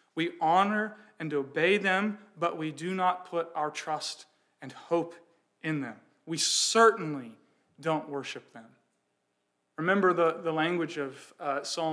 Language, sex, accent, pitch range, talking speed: English, male, American, 145-180 Hz, 140 wpm